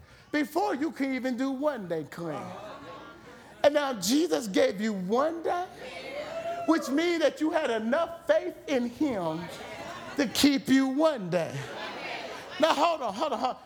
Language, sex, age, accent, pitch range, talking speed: English, male, 40-59, American, 245-325 Hz, 160 wpm